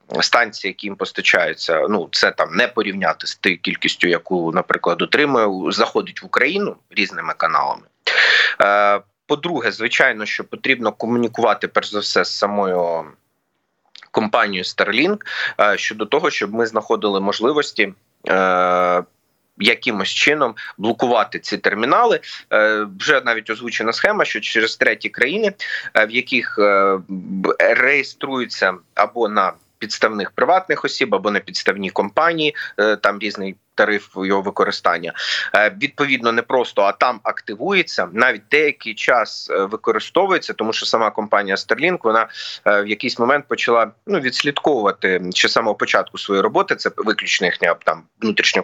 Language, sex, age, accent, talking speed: Ukrainian, male, 30-49, native, 125 wpm